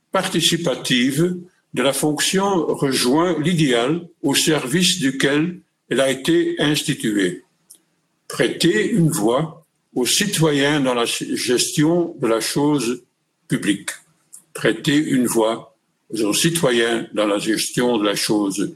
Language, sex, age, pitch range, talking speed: Dutch, male, 60-79, 130-170 Hz, 115 wpm